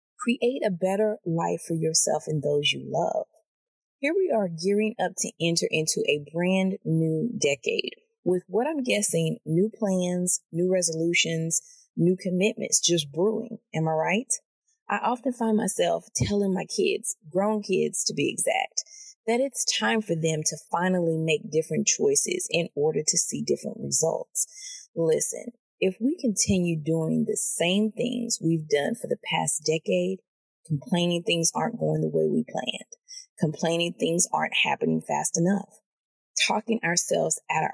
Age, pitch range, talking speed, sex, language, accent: 30-49, 165-235 Hz, 155 wpm, female, English, American